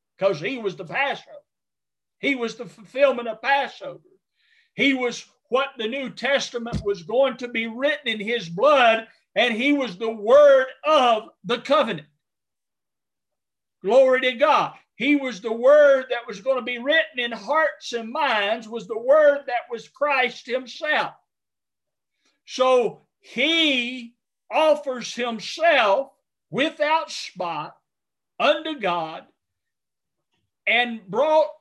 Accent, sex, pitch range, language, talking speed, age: American, male, 235-295 Hz, English, 125 wpm, 50-69